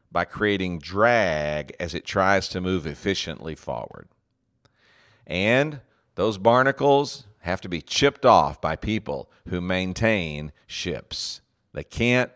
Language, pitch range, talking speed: English, 80-115 Hz, 120 wpm